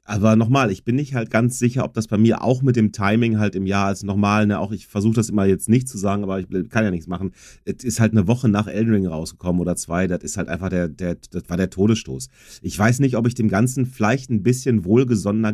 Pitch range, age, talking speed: 90-110 Hz, 30-49, 265 wpm